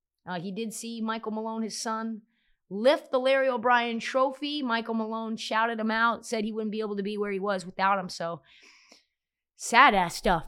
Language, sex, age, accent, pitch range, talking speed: English, female, 30-49, American, 170-230 Hz, 195 wpm